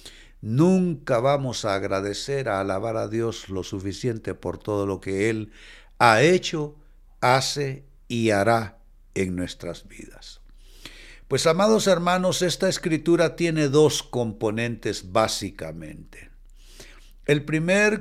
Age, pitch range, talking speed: 60-79, 120-180 Hz, 115 wpm